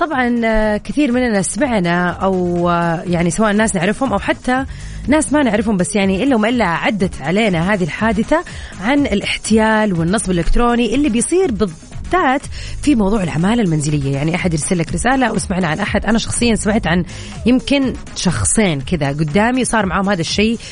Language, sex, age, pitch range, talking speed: Arabic, female, 30-49, 175-245 Hz, 155 wpm